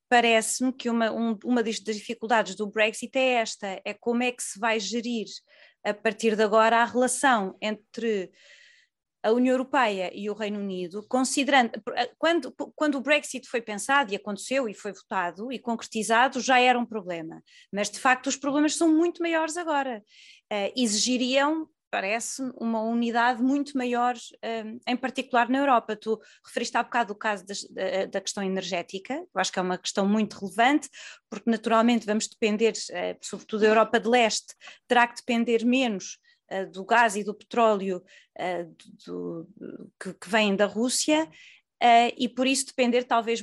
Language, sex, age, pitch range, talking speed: Portuguese, female, 20-39, 210-255 Hz, 155 wpm